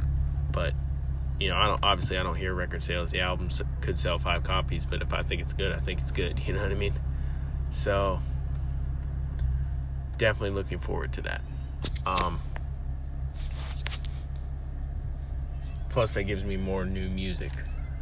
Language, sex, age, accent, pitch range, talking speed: English, male, 20-39, American, 70-75 Hz, 150 wpm